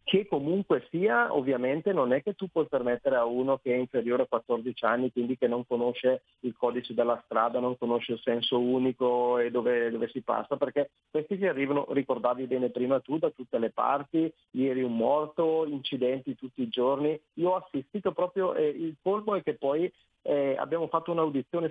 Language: Italian